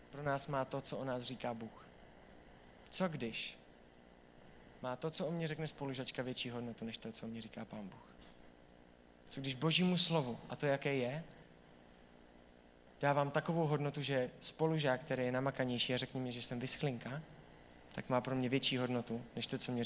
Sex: male